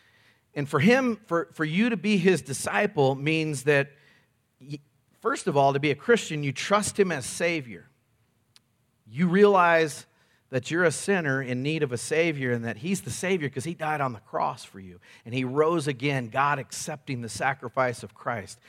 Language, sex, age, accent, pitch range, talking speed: English, male, 40-59, American, 120-165 Hz, 185 wpm